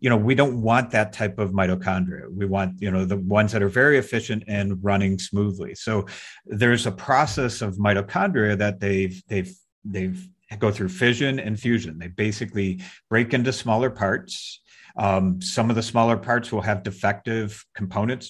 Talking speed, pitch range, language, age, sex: 170 wpm, 100-120 Hz, English, 50-69, male